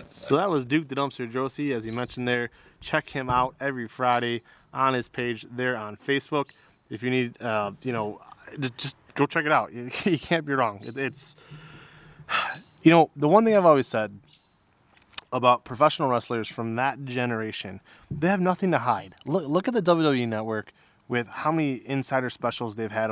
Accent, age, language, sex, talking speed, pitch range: American, 20-39, English, male, 190 wpm, 115-135 Hz